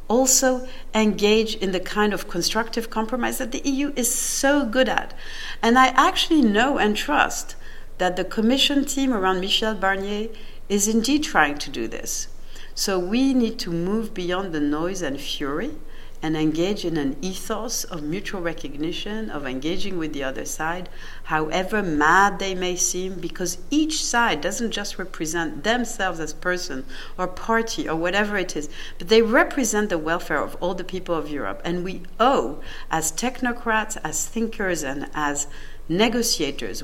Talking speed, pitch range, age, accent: 160 wpm, 160-230 Hz, 60-79, French